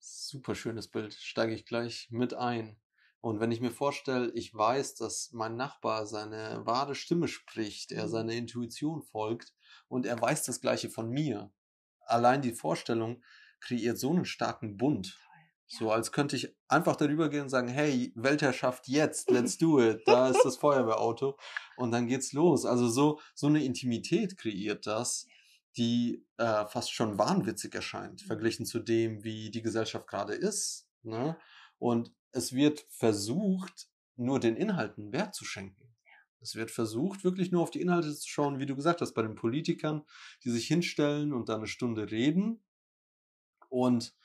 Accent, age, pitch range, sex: German, 30-49, 110-145 Hz, male